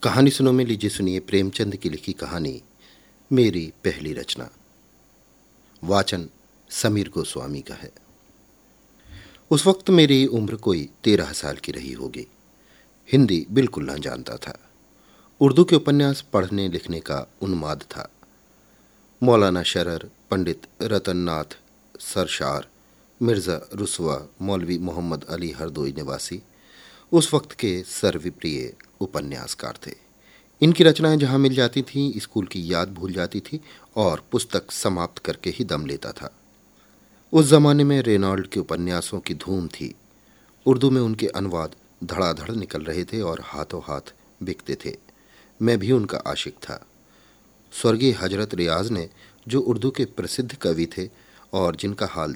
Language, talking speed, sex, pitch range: Hindi, 135 wpm, male, 85-125 Hz